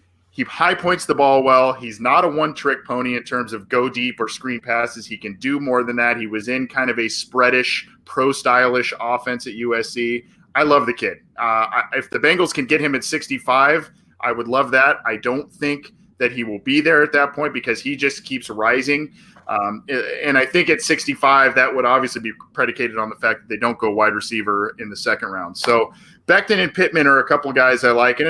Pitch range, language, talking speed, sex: 120-150 Hz, English, 230 wpm, male